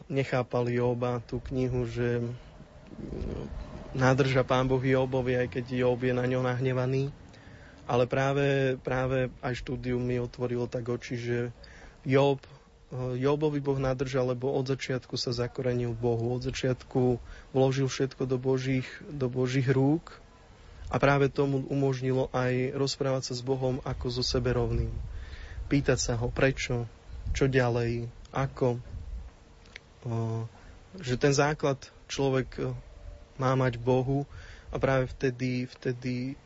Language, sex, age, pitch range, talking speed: Slovak, male, 20-39, 120-130 Hz, 125 wpm